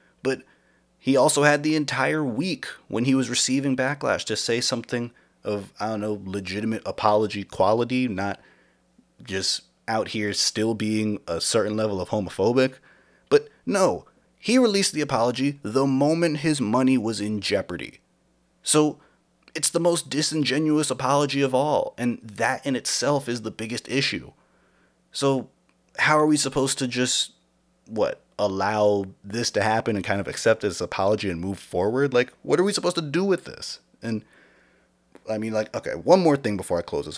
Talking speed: 170 wpm